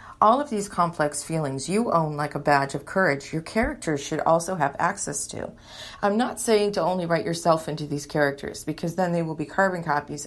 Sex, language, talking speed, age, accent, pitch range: female, English, 210 wpm, 40-59, American, 150-200 Hz